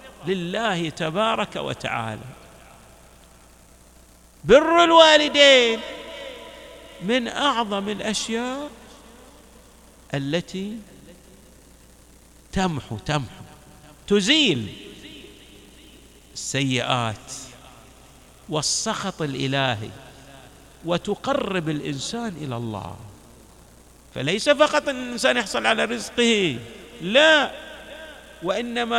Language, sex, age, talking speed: Arabic, male, 50-69, 55 wpm